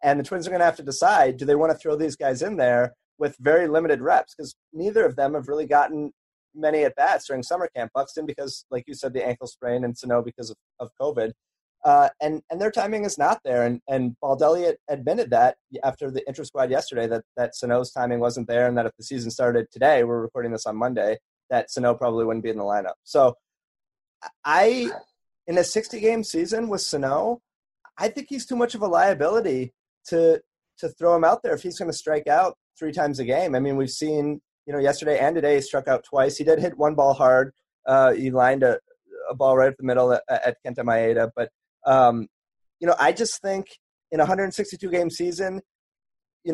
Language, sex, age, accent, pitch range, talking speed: English, male, 30-49, American, 125-175 Hz, 215 wpm